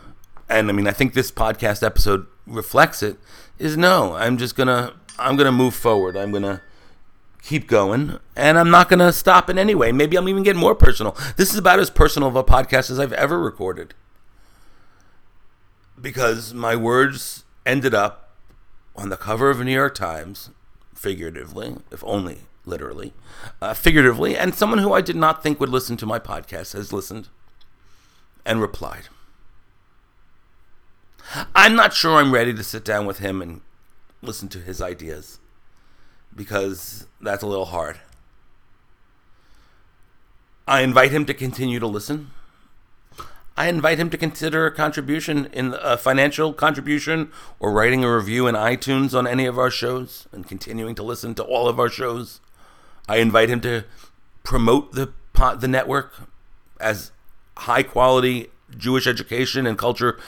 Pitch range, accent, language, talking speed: 100-135 Hz, American, English, 160 wpm